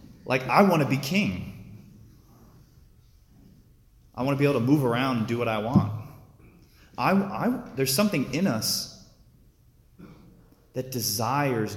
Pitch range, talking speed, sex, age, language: 100-130 Hz, 140 wpm, male, 30-49, English